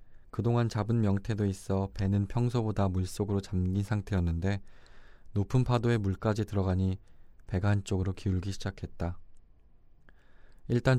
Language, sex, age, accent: Korean, male, 20-39, native